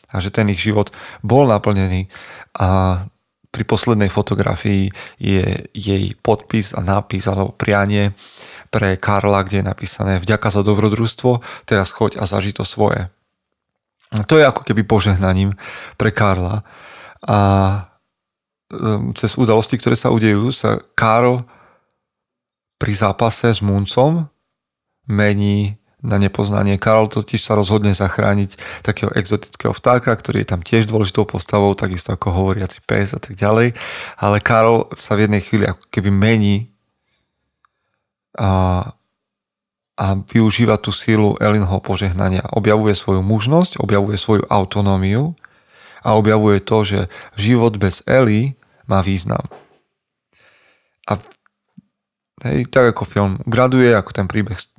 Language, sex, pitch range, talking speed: Slovak, male, 100-110 Hz, 125 wpm